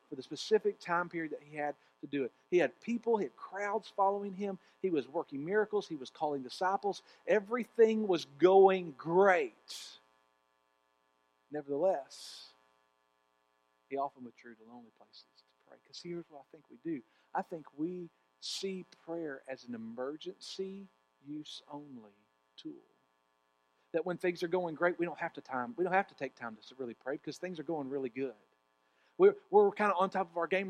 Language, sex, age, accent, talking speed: English, male, 50-69, American, 175 wpm